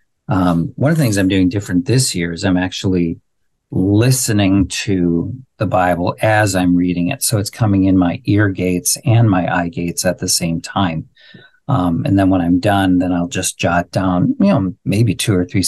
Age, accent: 50-69, American